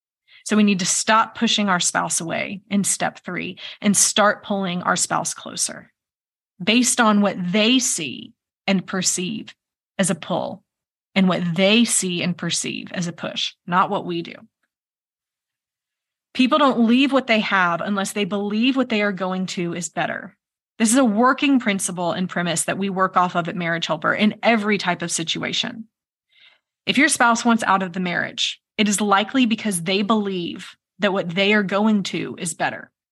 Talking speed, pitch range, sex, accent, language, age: 180 wpm, 185-240 Hz, female, American, English, 20-39